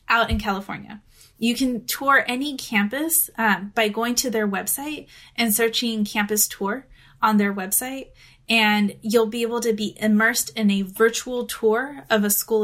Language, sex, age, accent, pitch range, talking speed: English, female, 20-39, American, 210-245 Hz, 165 wpm